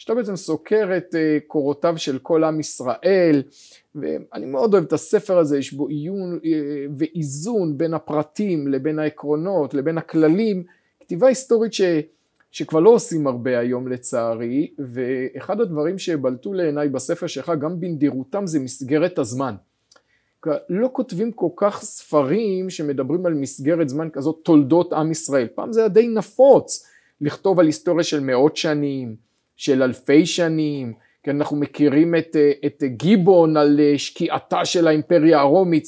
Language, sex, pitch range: Hebrew, male, 145-185 Hz